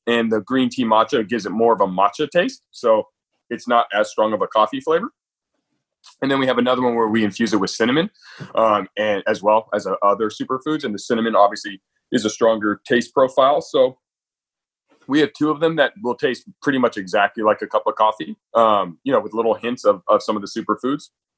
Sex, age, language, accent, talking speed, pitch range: male, 30-49, English, American, 220 wpm, 105-135 Hz